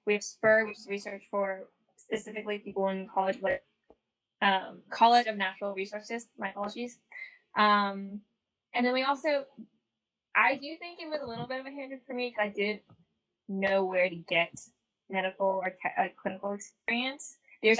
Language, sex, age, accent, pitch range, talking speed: English, female, 10-29, American, 195-225 Hz, 170 wpm